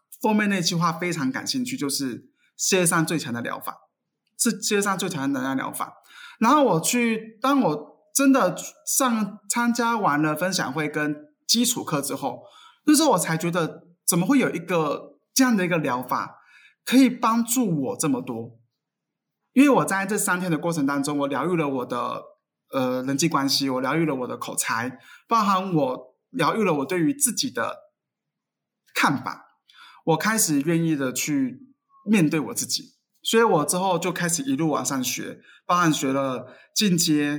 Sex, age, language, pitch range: male, 20-39, Chinese, 150-240 Hz